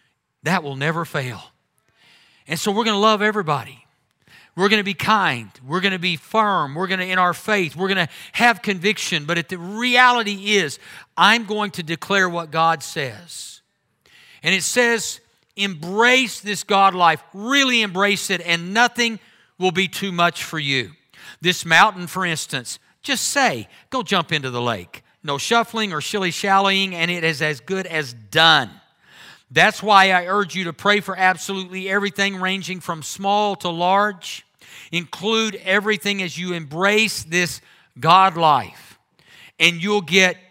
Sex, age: male, 50-69